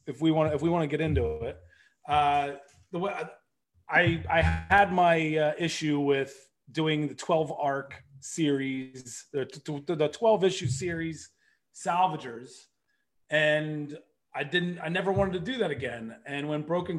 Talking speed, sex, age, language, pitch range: 155 wpm, male, 30-49, English, 140-170 Hz